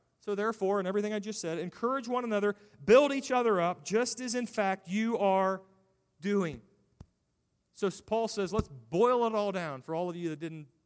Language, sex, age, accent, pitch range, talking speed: English, male, 30-49, American, 135-190 Hz, 195 wpm